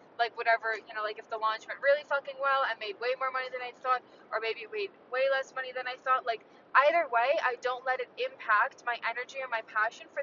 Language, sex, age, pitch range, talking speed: English, female, 10-29, 230-285 Hz, 250 wpm